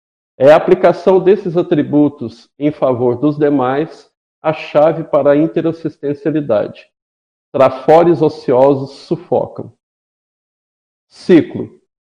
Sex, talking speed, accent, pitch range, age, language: male, 90 wpm, Brazilian, 140-170 Hz, 50-69, Portuguese